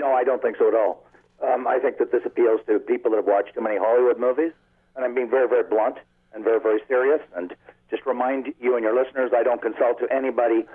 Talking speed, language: 245 wpm, English